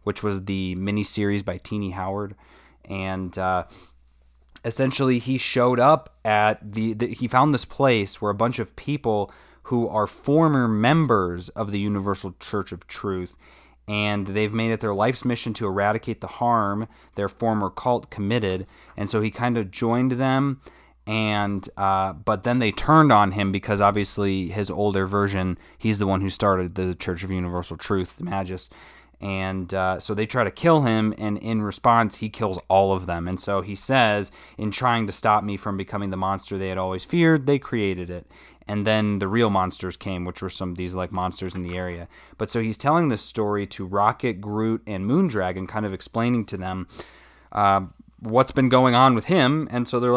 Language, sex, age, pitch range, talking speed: English, male, 20-39, 95-120 Hz, 190 wpm